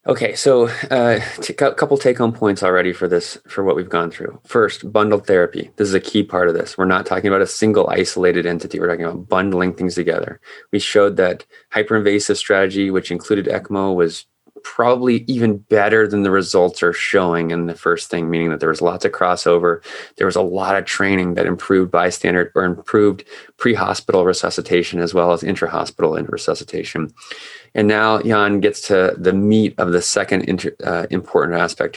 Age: 20-39